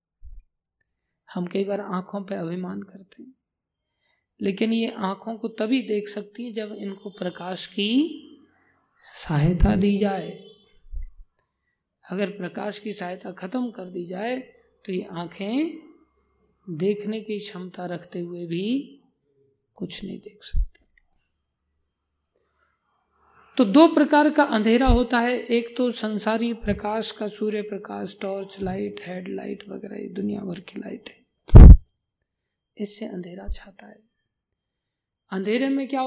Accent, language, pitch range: native, Hindi, 190-245 Hz